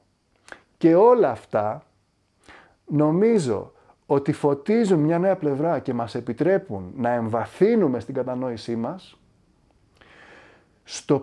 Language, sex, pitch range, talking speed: Greek, male, 120-175 Hz, 95 wpm